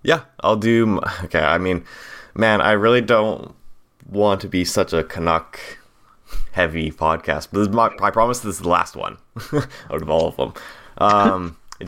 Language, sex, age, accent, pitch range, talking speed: English, male, 20-39, American, 80-105 Hz, 170 wpm